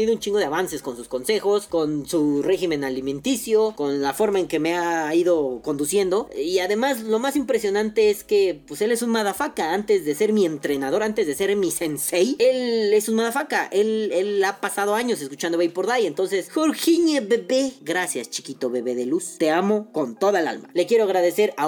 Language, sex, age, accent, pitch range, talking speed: Spanish, female, 20-39, Mexican, 170-220 Hz, 200 wpm